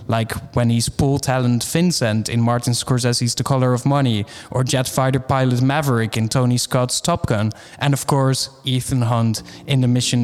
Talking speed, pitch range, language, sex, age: 180 wpm, 120-140 Hz, English, male, 20-39